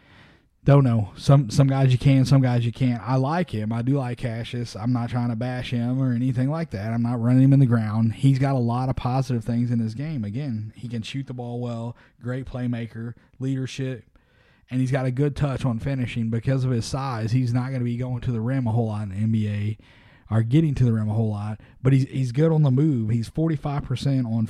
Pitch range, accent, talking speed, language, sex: 110-130 Hz, American, 245 wpm, English, male